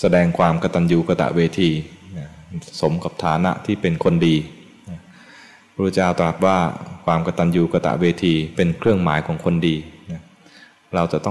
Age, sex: 20-39, male